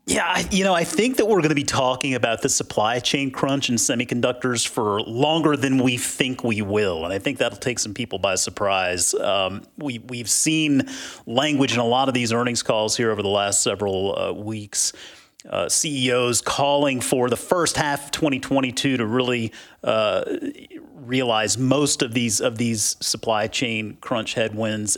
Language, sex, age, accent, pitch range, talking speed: English, male, 40-59, American, 120-150 Hz, 180 wpm